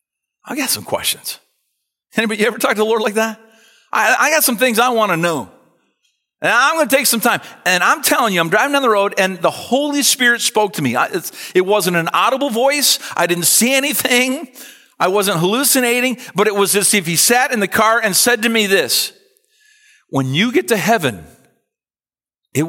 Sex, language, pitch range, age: male, English, 180-280 Hz, 40-59